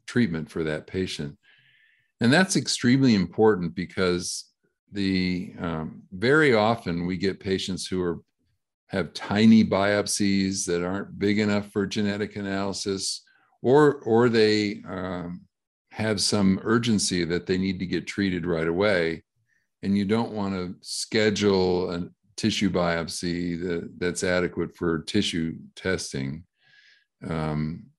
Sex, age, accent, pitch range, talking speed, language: male, 50-69, American, 85-105 Hz, 125 wpm, English